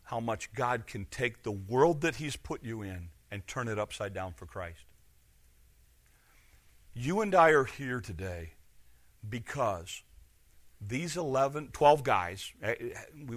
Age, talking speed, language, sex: 40-59, 140 wpm, English, male